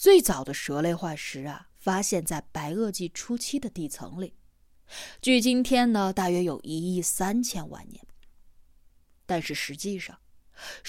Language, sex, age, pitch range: Chinese, female, 20-39, 135-225 Hz